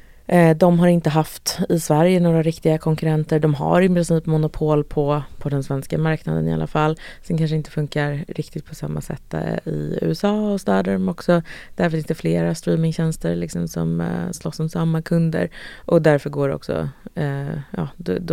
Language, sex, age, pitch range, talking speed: Swedish, female, 20-39, 145-180 Hz, 170 wpm